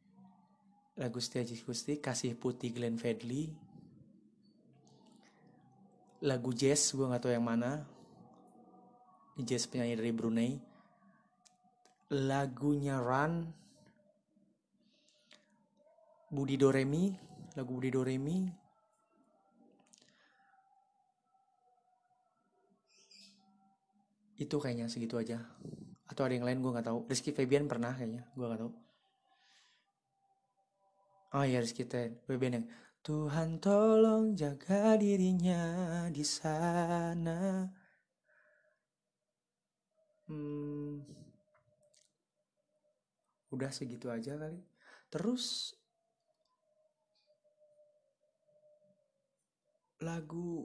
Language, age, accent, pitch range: Indonesian, 30-49, native, 135-215 Hz